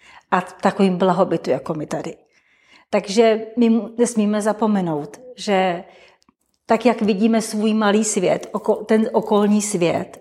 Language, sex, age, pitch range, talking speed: Czech, female, 40-59, 185-220 Hz, 120 wpm